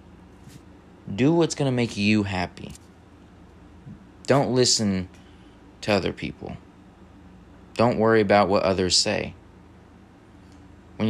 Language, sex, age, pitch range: English, male, 20-39, 95-105 Hz